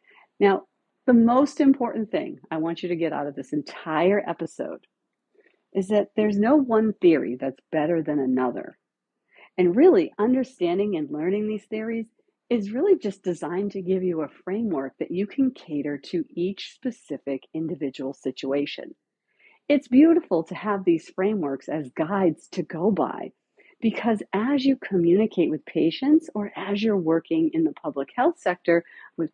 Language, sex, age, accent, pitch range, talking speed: English, female, 50-69, American, 165-265 Hz, 155 wpm